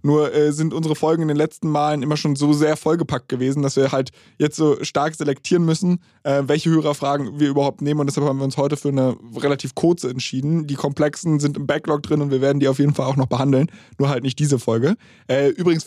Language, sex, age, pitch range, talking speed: German, male, 20-39, 140-165 Hz, 240 wpm